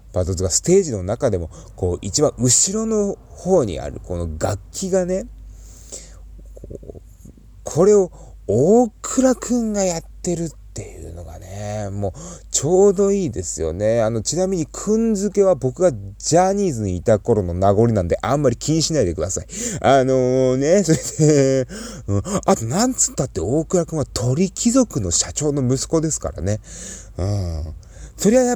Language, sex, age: Japanese, male, 30-49